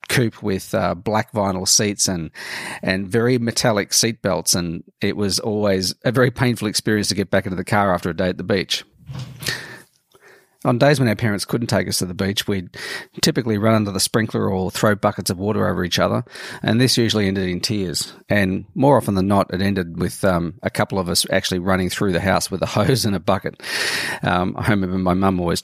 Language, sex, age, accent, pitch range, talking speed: English, male, 40-59, Australian, 95-115 Hz, 220 wpm